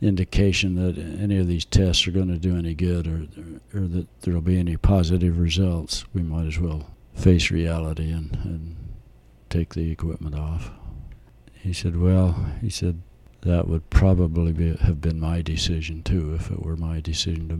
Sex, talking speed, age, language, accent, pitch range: male, 180 wpm, 60-79, English, American, 85-95 Hz